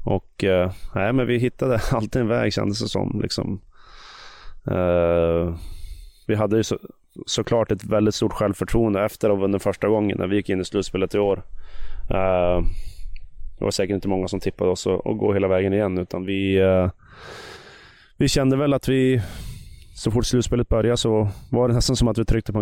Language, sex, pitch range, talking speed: Swedish, male, 95-105 Hz, 190 wpm